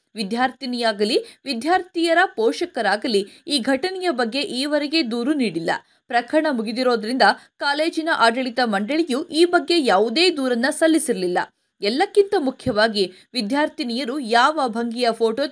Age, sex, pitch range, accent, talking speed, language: 20-39, female, 225-320 Hz, native, 95 wpm, Kannada